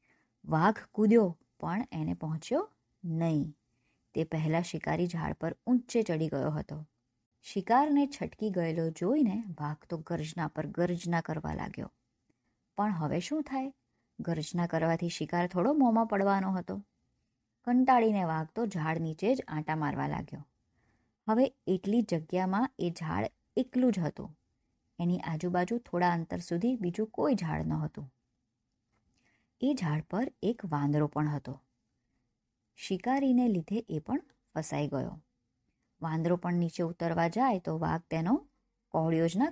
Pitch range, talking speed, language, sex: 155-225 Hz, 130 wpm, Gujarati, male